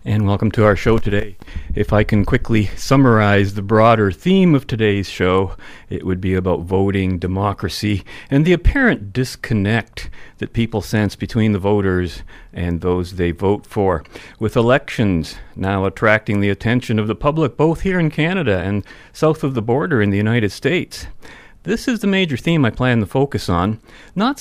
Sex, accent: male, American